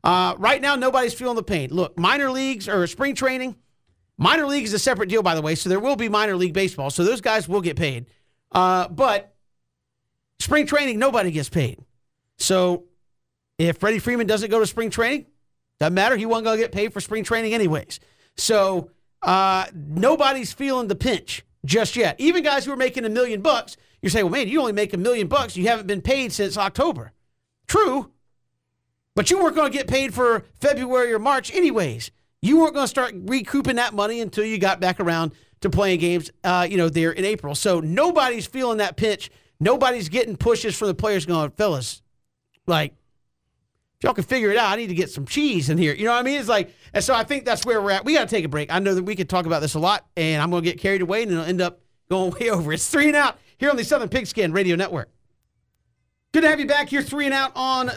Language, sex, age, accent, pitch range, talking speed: English, male, 50-69, American, 175-255 Hz, 230 wpm